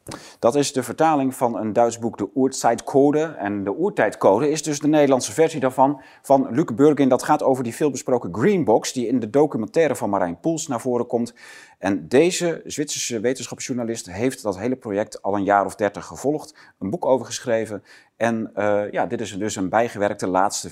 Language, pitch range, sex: Dutch, 100-135 Hz, male